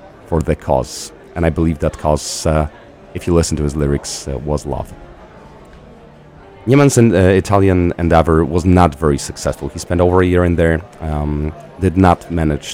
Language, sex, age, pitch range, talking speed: Polish, male, 30-49, 75-90 Hz, 175 wpm